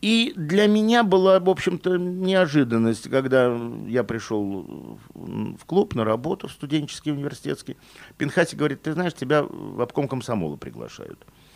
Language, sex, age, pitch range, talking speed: Russian, male, 50-69, 110-160 Hz, 135 wpm